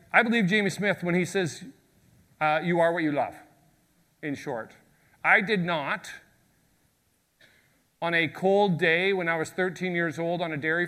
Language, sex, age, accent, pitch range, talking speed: English, male, 40-59, American, 145-180 Hz, 170 wpm